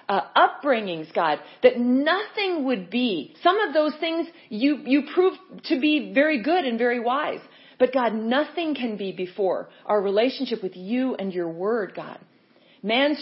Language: English